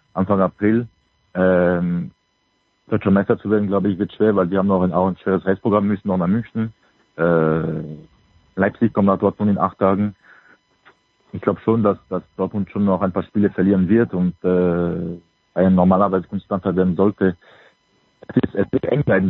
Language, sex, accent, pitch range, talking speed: German, male, German, 90-100 Hz, 180 wpm